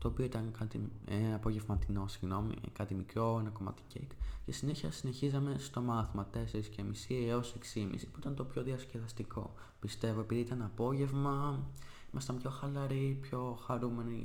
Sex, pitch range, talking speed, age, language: male, 105-125 Hz, 145 wpm, 20-39, Greek